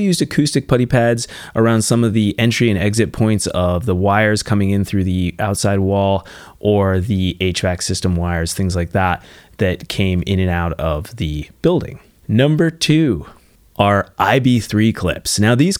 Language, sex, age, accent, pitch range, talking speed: English, male, 30-49, American, 95-120 Hz, 165 wpm